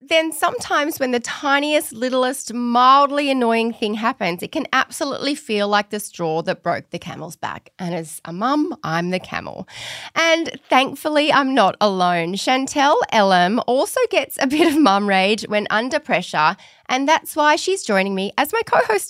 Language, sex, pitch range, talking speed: English, female, 190-290 Hz, 175 wpm